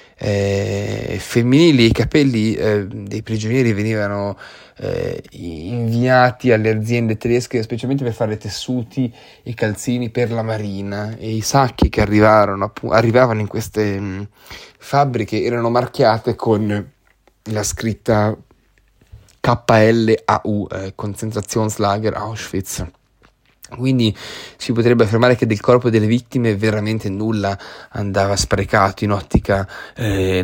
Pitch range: 105-120 Hz